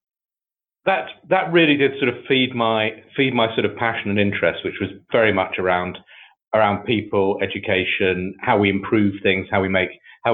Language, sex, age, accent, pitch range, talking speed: English, male, 40-59, British, 100-135 Hz, 180 wpm